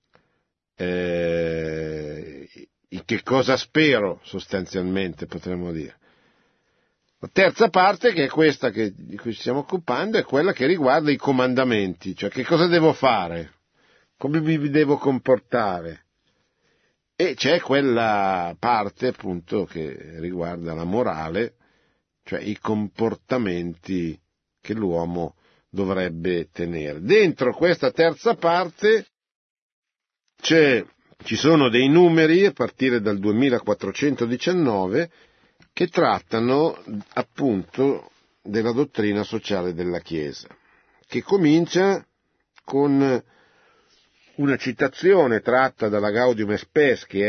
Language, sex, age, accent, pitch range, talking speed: Italian, male, 50-69, native, 90-140 Hz, 105 wpm